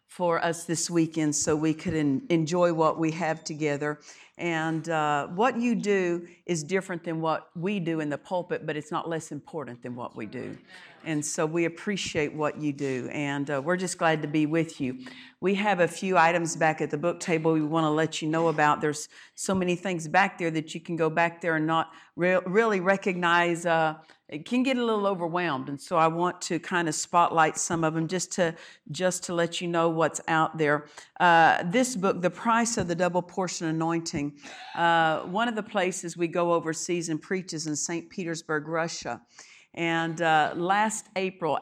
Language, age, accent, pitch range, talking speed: English, 50-69, American, 155-180 Hz, 200 wpm